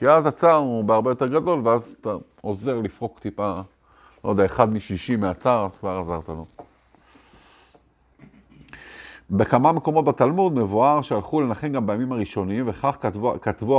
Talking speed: 145 wpm